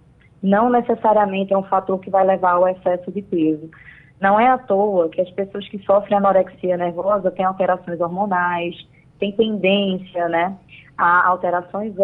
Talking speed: 155 wpm